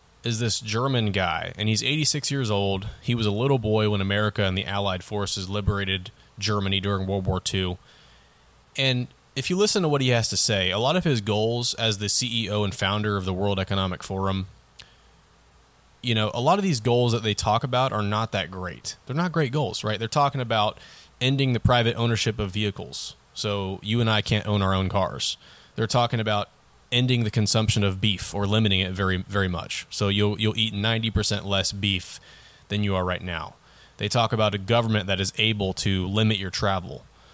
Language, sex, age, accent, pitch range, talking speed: English, male, 20-39, American, 95-120 Hz, 205 wpm